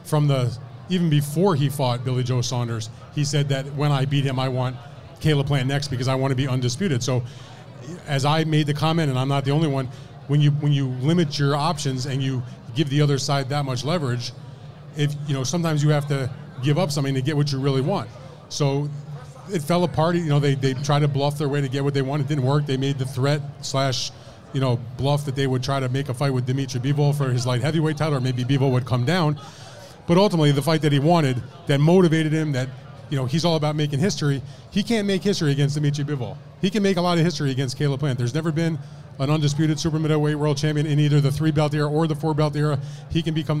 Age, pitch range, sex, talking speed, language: 30-49, 135-150 Hz, male, 245 wpm, English